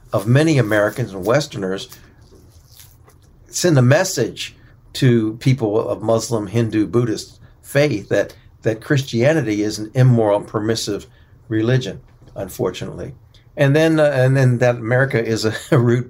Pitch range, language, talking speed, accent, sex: 110-125 Hz, English, 135 wpm, American, male